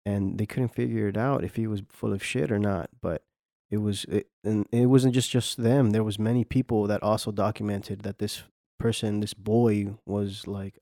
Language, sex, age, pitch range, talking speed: English, male, 20-39, 100-115 Hz, 205 wpm